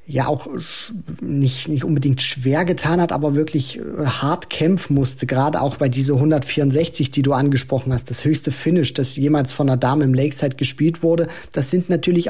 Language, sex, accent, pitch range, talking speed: German, male, German, 140-170 Hz, 180 wpm